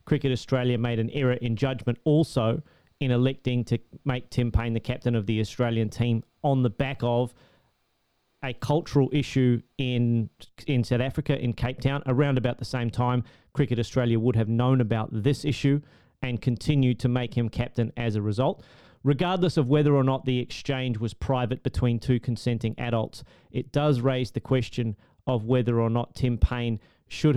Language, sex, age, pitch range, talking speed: English, male, 30-49, 120-140 Hz, 180 wpm